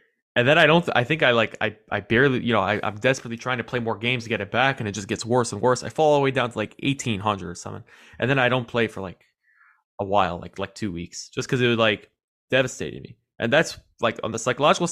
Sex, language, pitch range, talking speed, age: male, English, 100-125 Hz, 280 wpm, 20-39